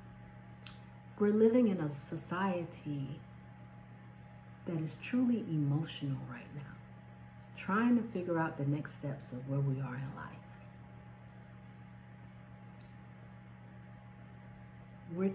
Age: 40-59